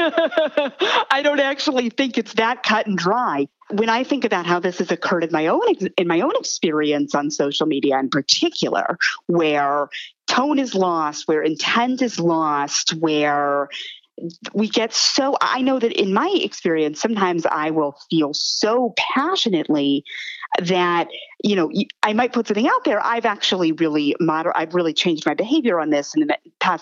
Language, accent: English, American